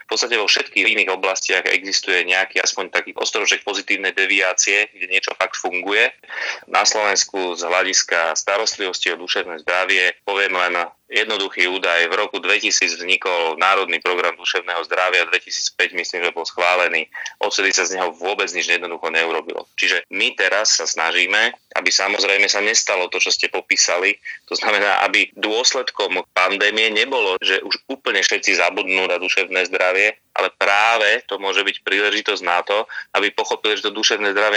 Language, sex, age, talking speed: Slovak, male, 30-49, 160 wpm